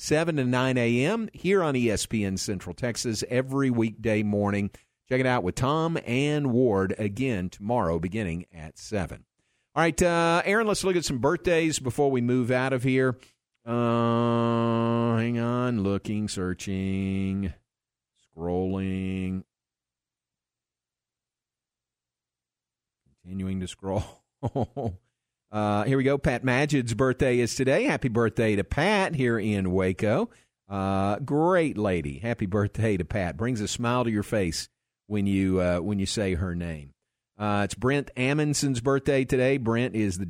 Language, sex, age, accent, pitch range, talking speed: English, male, 50-69, American, 95-130 Hz, 140 wpm